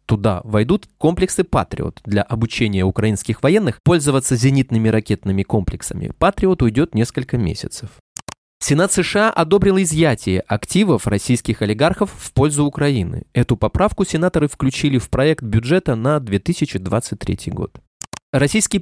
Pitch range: 115-165 Hz